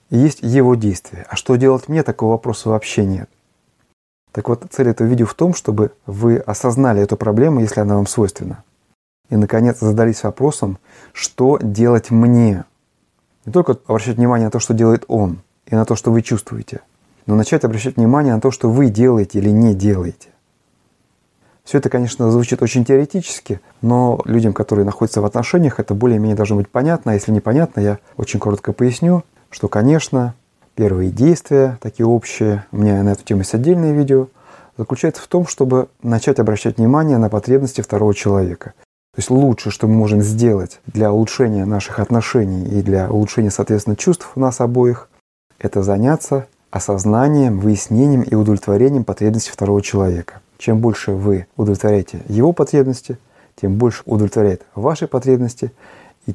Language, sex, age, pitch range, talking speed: Russian, male, 30-49, 105-130 Hz, 160 wpm